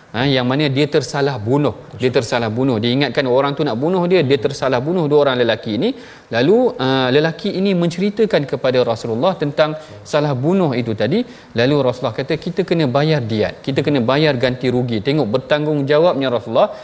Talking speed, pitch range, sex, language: 175 wpm, 140-190 Hz, male, Malayalam